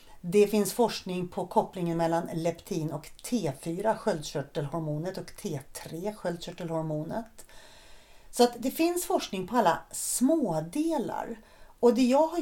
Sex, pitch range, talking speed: female, 160-240 Hz, 125 wpm